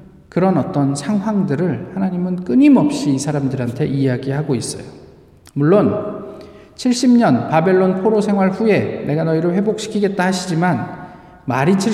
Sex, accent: male, native